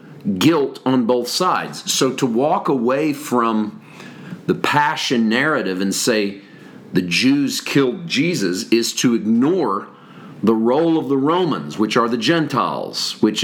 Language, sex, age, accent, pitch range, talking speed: English, male, 40-59, American, 115-170 Hz, 140 wpm